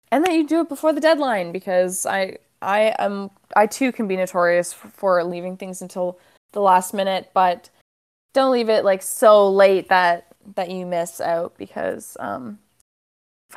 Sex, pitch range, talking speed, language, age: female, 180-210 Hz, 175 wpm, English, 20-39